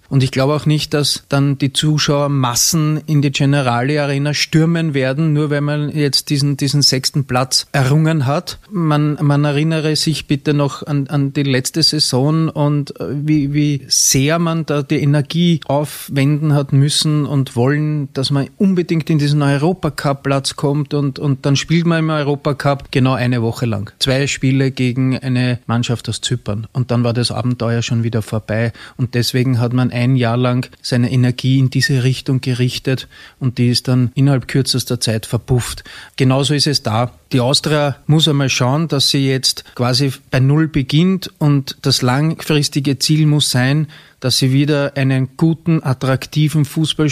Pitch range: 130-150 Hz